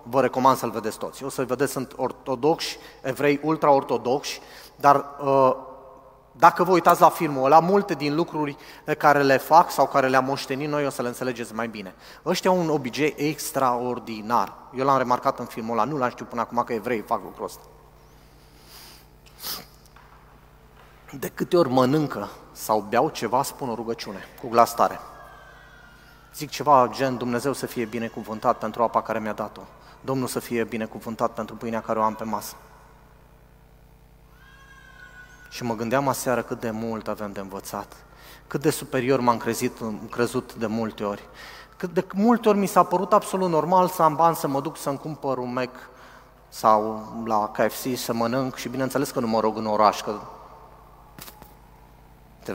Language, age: Romanian, 30-49